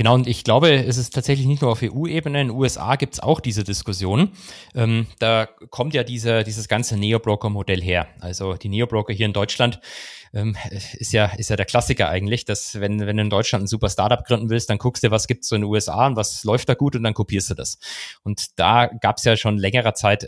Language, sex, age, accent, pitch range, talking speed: German, male, 30-49, German, 105-125 Hz, 235 wpm